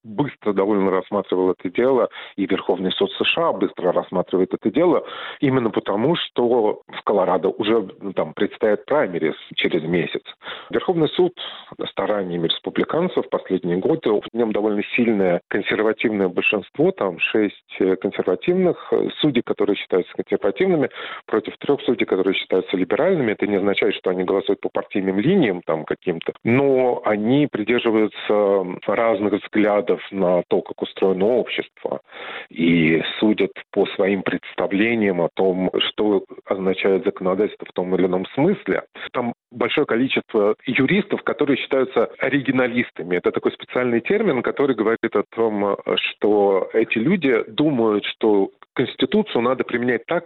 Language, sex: Russian, male